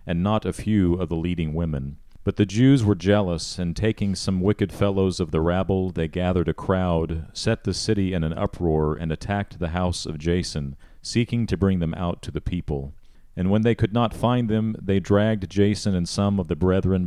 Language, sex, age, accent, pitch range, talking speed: English, male, 40-59, American, 85-100 Hz, 210 wpm